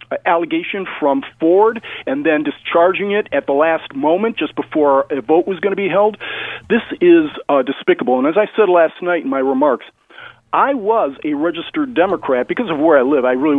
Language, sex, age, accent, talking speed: English, male, 40-59, American, 200 wpm